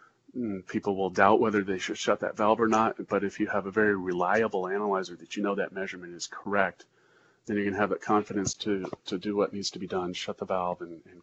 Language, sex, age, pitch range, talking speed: English, male, 30-49, 95-110 Hz, 250 wpm